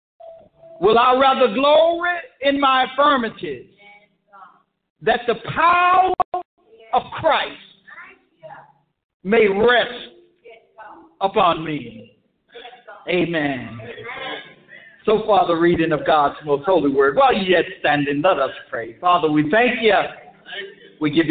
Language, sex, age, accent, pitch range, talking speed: English, male, 60-79, American, 155-260 Hz, 110 wpm